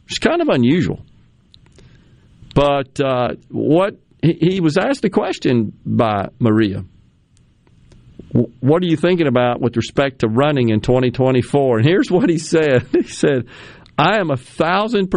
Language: English